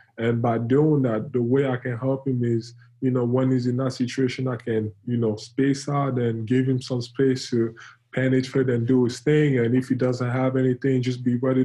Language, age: English, 20-39